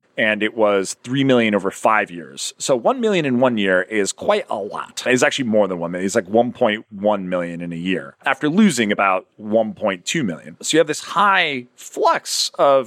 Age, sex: 30-49, male